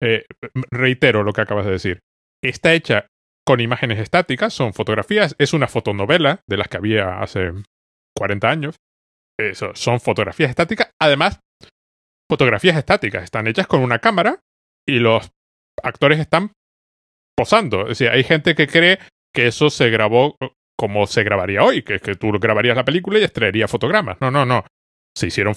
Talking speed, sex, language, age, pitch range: 165 wpm, male, Spanish, 30-49, 105-155 Hz